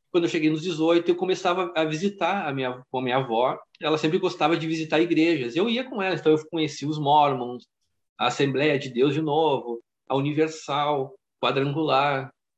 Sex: male